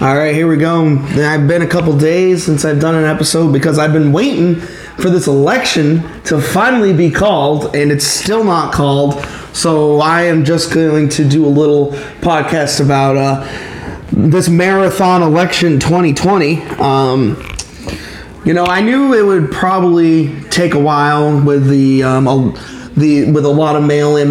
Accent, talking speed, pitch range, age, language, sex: American, 170 wpm, 145-175 Hz, 30-49, English, male